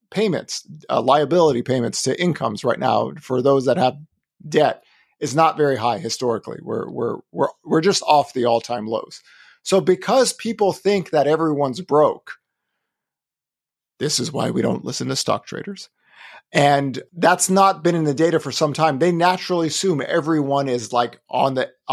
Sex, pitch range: male, 130-165 Hz